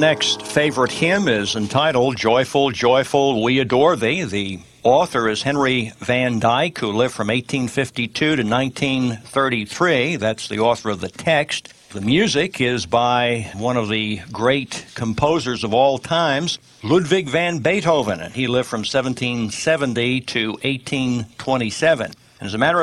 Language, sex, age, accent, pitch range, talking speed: English, male, 60-79, American, 115-145 Hz, 140 wpm